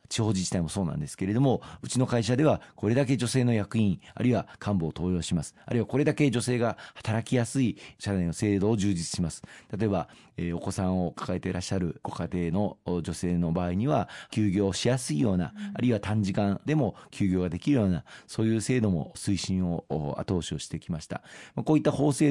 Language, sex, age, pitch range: Japanese, male, 40-59, 90-125 Hz